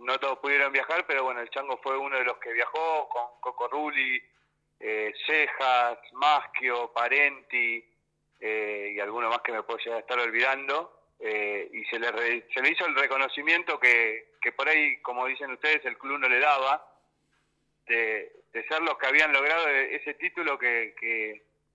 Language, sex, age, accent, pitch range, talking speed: Spanish, male, 40-59, Argentinian, 120-150 Hz, 175 wpm